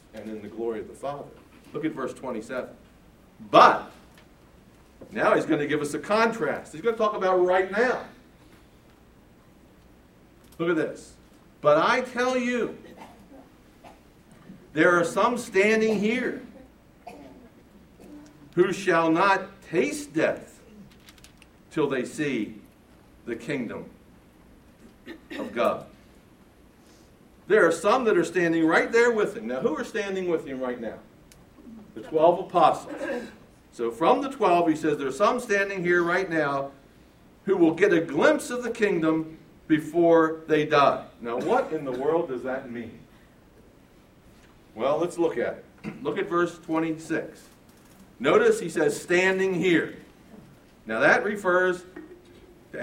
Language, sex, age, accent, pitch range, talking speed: English, male, 60-79, American, 155-210 Hz, 140 wpm